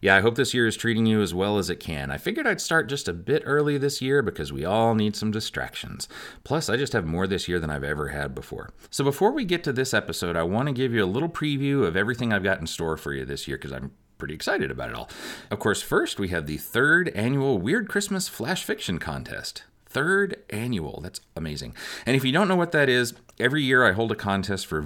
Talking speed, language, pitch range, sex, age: 255 wpm, English, 85-130 Hz, male, 30-49